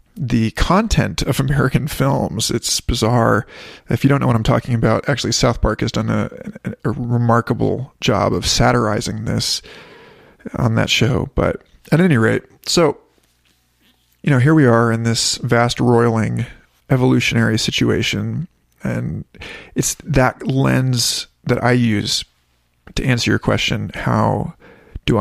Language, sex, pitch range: English, male, 115-145 Hz